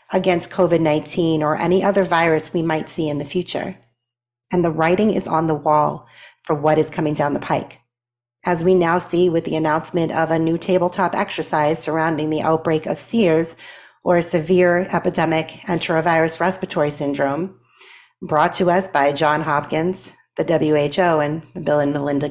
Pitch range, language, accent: 150-180 Hz, English, American